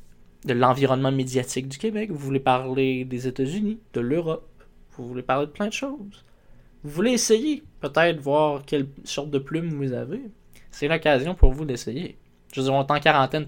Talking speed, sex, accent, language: 185 wpm, male, Canadian, French